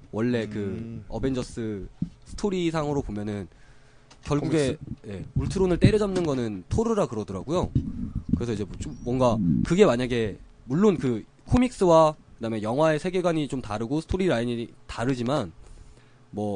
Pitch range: 105-165 Hz